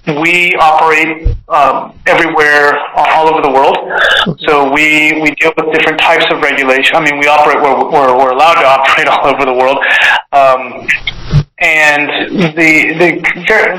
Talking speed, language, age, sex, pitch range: 150 wpm, English, 30-49, male, 140-165 Hz